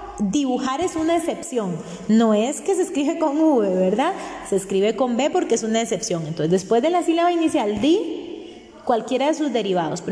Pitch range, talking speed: 200-260 Hz, 190 wpm